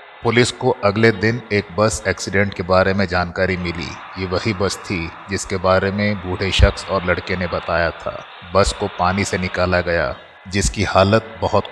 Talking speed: 180 wpm